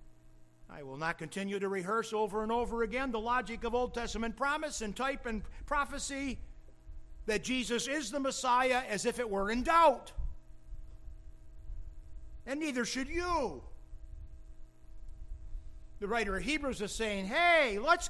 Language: English